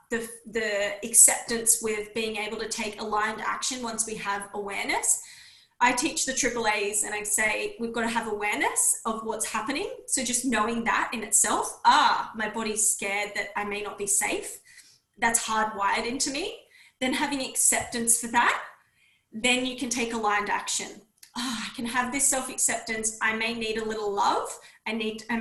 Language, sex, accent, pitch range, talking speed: English, female, Australian, 215-245 Hz, 175 wpm